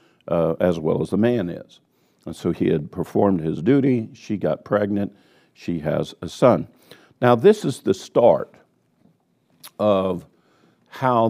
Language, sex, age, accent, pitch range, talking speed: English, male, 50-69, American, 95-125 Hz, 150 wpm